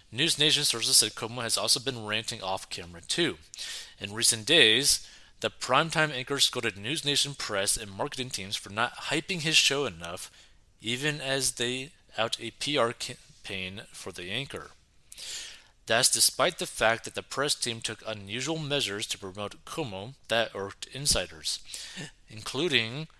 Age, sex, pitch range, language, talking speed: 30-49, male, 95-130 Hz, English, 150 wpm